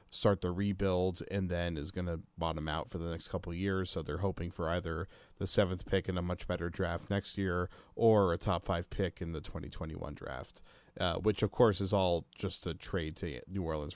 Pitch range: 85-100 Hz